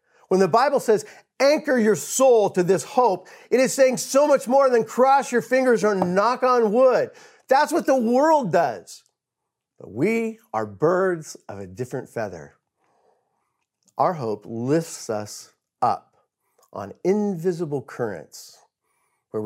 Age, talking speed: 50-69, 140 wpm